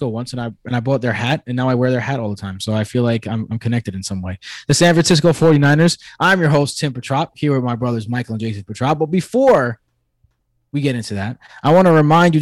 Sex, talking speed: male, 265 wpm